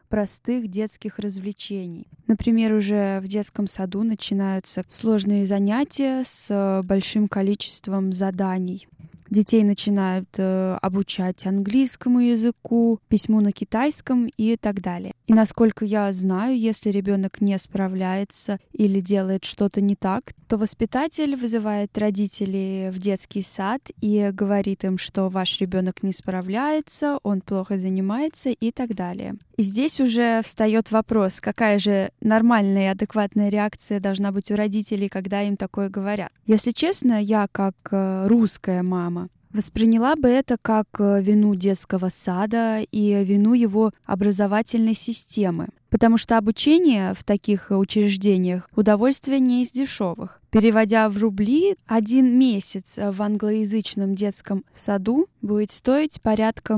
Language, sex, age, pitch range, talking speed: Russian, female, 10-29, 195-225 Hz, 125 wpm